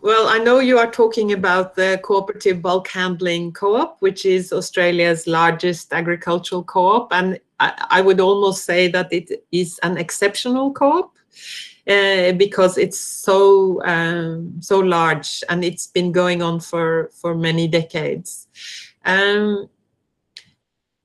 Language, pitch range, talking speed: Malay, 180-220 Hz, 135 wpm